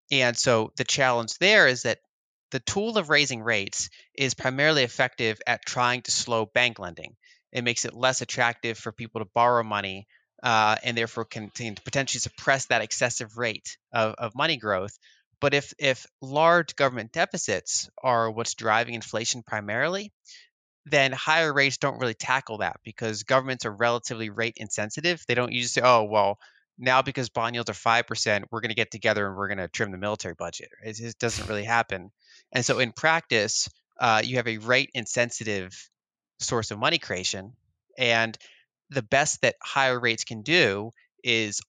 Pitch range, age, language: 110-130 Hz, 20-39, English